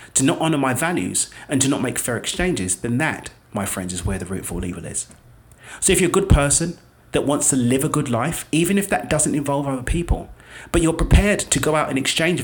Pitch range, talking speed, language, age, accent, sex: 105-145 Hz, 245 wpm, English, 30-49, British, male